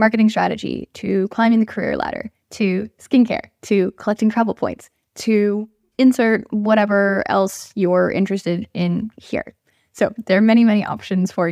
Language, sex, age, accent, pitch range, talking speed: English, female, 10-29, American, 195-260 Hz, 145 wpm